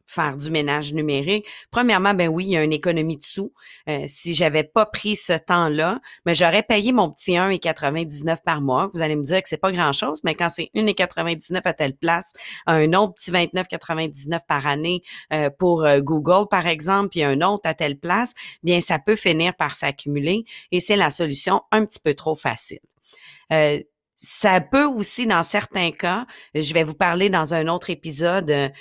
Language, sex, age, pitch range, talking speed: French, female, 40-59, 150-190 Hz, 195 wpm